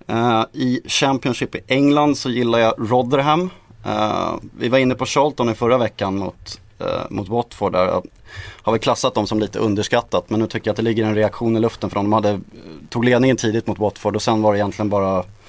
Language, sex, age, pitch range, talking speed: Swedish, male, 20-39, 105-120 Hz, 215 wpm